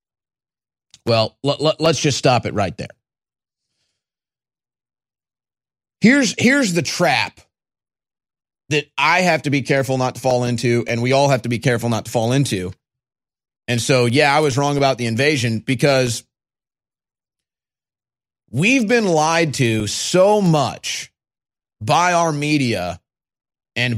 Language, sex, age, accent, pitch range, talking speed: English, male, 30-49, American, 125-175 Hz, 135 wpm